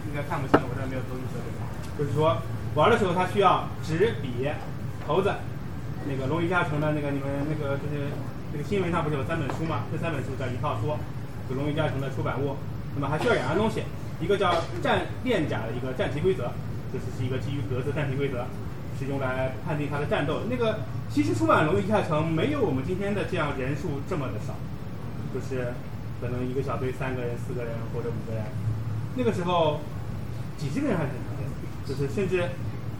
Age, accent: 20-39, native